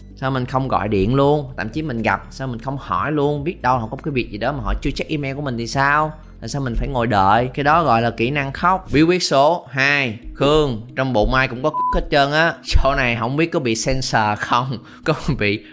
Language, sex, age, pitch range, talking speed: Vietnamese, male, 20-39, 120-155 Hz, 265 wpm